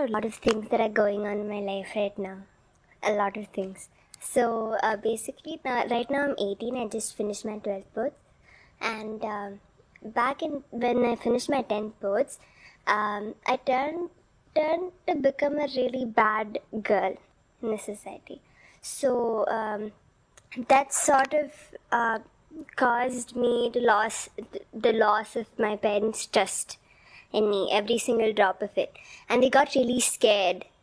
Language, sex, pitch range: English, male, 210-250 Hz